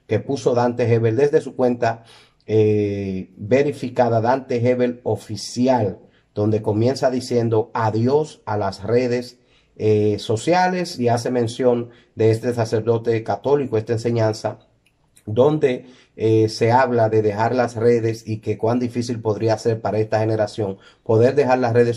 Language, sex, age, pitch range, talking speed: Spanish, male, 30-49, 110-125 Hz, 140 wpm